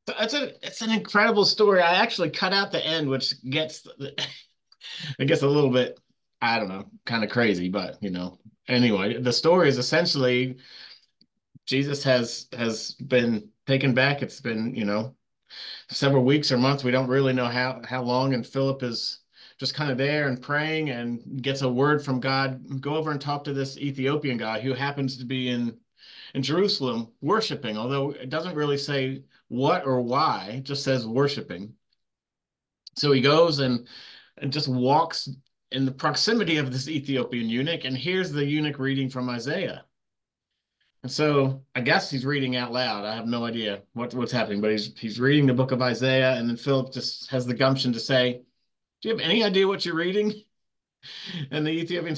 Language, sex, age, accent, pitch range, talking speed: English, male, 30-49, American, 125-150 Hz, 185 wpm